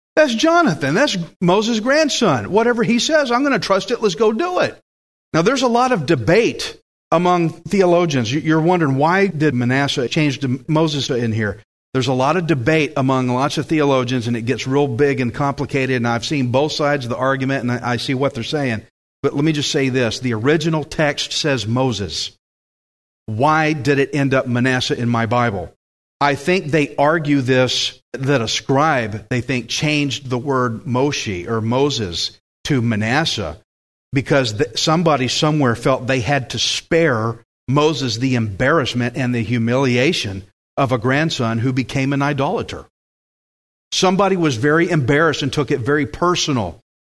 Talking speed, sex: 170 wpm, male